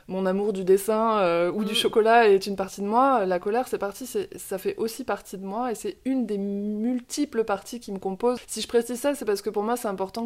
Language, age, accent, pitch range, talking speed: French, 20-39, French, 190-235 Hz, 250 wpm